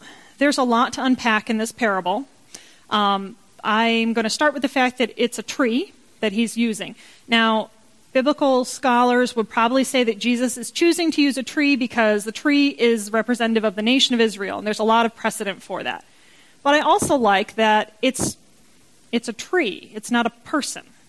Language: English